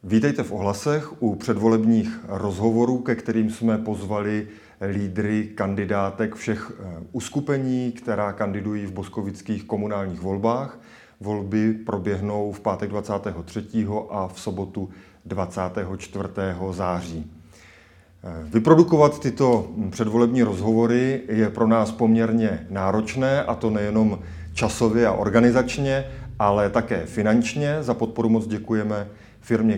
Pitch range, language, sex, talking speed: 100-115 Hz, Czech, male, 105 wpm